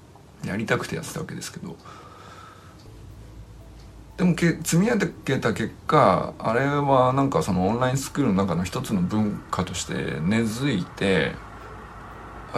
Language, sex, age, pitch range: Japanese, male, 50-69, 100-165 Hz